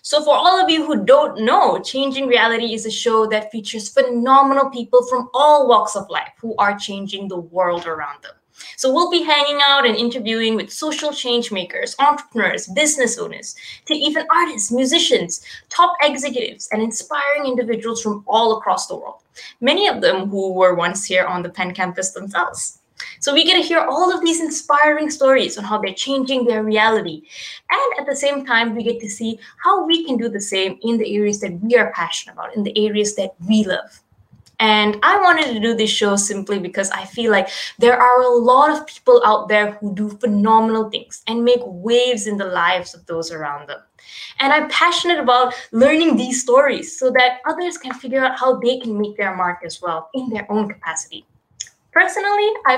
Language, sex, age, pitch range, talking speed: English, female, 20-39, 205-280 Hz, 200 wpm